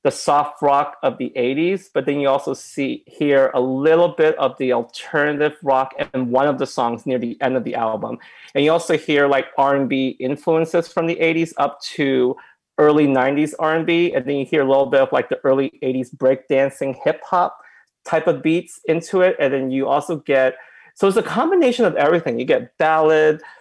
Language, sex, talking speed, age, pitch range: English, male, 200 wpm, 30-49, 130-160 Hz